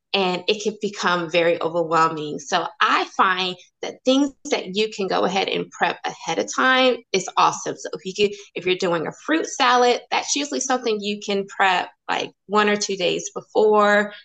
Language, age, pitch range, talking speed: English, 20-39, 170-210 Hz, 200 wpm